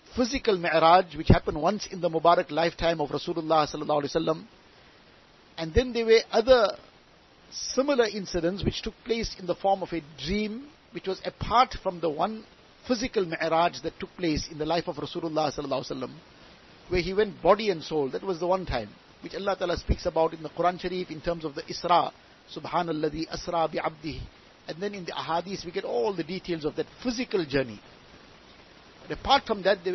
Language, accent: English, Indian